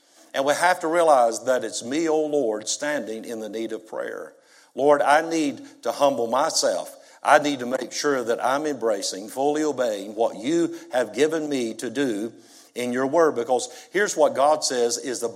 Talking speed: 190 wpm